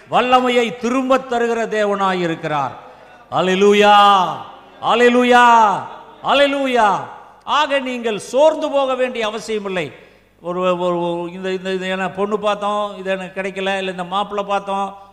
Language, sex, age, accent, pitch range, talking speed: Tamil, male, 50-69, native, 180-230 Hz, 100 wpm